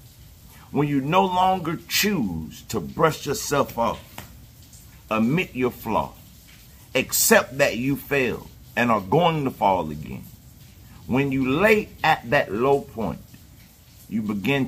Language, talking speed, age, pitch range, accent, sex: English, 125 wpm, 50-69, 105-145 Hz, American, male